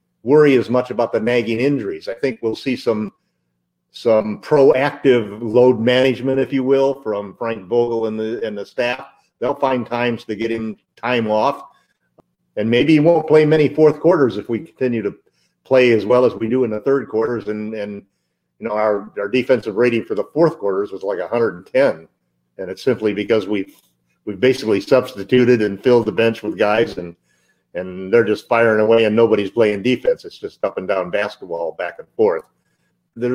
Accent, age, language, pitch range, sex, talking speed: American, 50-69, English, 105-130 Hz, male, 190 wpm